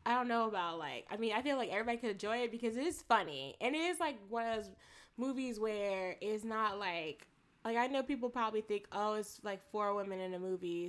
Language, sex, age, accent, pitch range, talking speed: English, female, 10-29, American, 185-260 Hz, 240 wpm